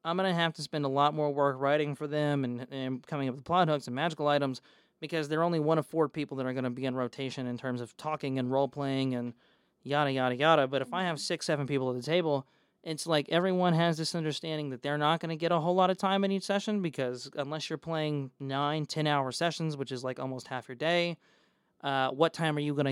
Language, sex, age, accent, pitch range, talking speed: English, male, 20-39, American, 135-165 Hz, 255 wpm